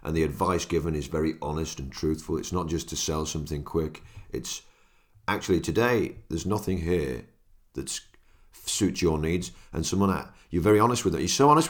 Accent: British